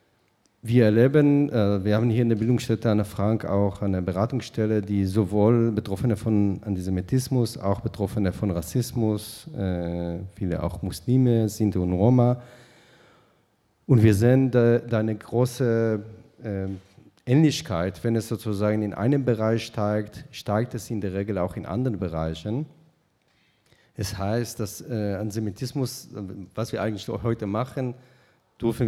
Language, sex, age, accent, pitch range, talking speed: German, male, 40-59, German, 100-120 Hz, 140 wpm